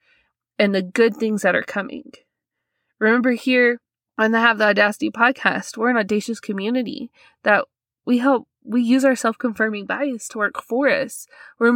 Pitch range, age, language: 205-245 Hz, 20-39, English